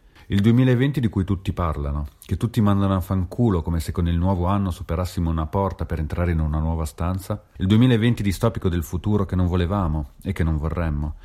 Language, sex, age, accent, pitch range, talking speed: Italian, male, 40-59, native, 80-100 Hz, 205 wpm